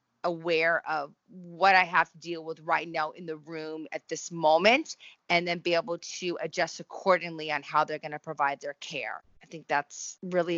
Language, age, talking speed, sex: English, 30-49, 200 wpm, female